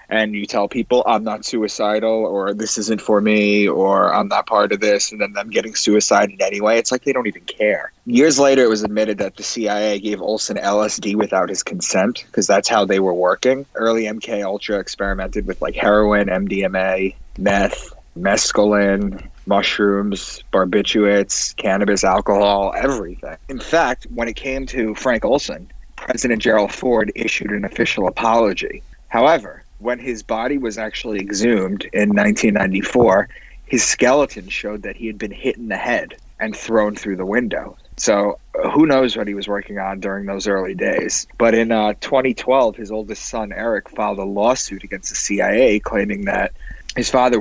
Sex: male